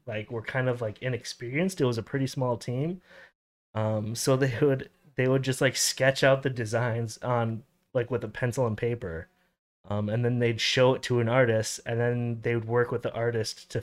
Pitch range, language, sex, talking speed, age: 110-130 Hz, English, male, 215 wpm, 20-39